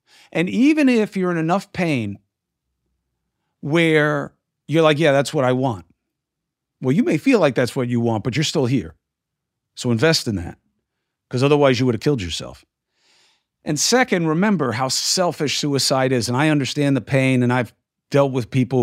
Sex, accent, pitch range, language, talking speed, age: male, American, 110-140 Hz, English, 180 wpm, 50-69